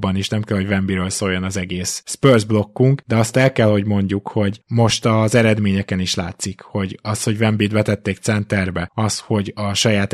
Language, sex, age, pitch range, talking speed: Hungarian, male, 20-39, 100-115 Hz, 190 wpm